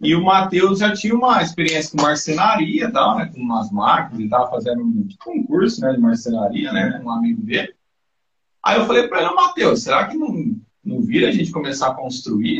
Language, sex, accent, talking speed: Portuguese, male, Brazilian, 230 wpm